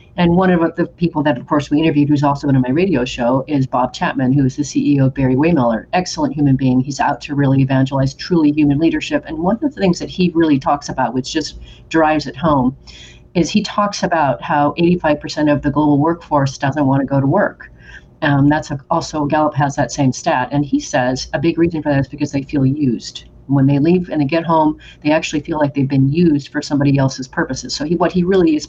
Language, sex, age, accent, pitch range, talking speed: English, female, 40-59, American, 140-160 Hz, 235 wpm